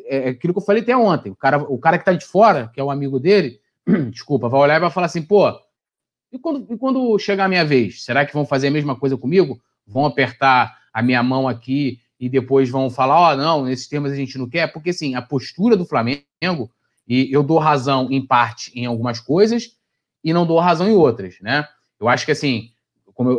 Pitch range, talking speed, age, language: 125-165 Hz, 235 wpm, 20-39, Portuguese